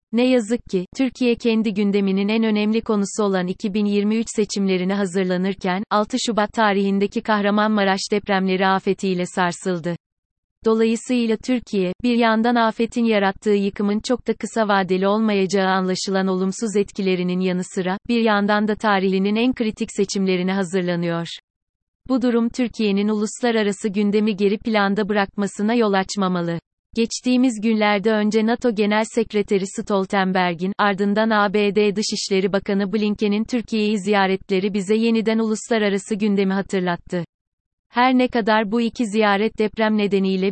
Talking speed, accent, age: 120 wpm, native, 30-49